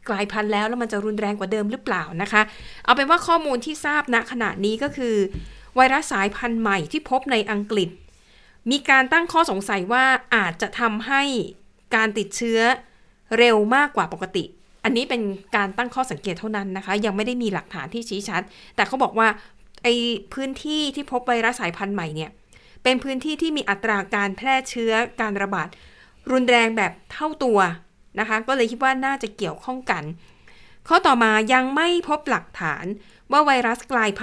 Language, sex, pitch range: Thai, female, 200-255 Hz